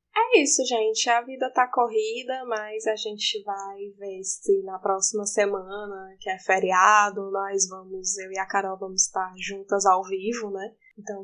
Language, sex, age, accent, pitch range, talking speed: Portuguese, female, 10-29, Brazilian, 195-235 Hz, 170 wpm